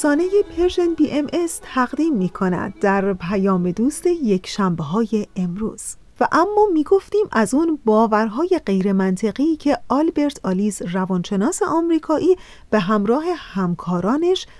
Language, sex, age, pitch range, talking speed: Persian, female, 40-59, 195-295 Hz, 115 wpm